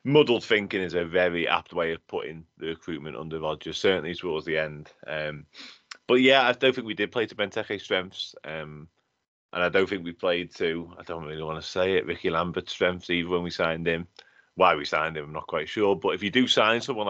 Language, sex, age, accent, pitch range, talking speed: English, male, 30-49, British, 85-100 Hz, 230 wpm